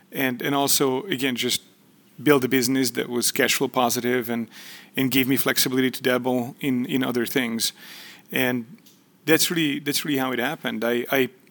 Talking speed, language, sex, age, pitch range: 175 wpm, English, male, 30-49, 120-140 Hz